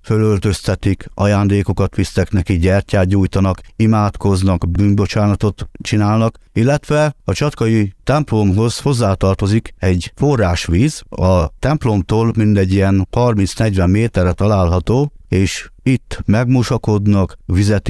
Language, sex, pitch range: Hungarian, male, 95-120 Hz